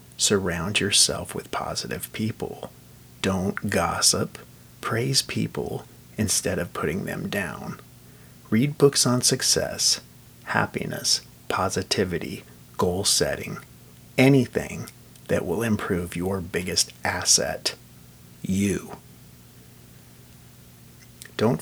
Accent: American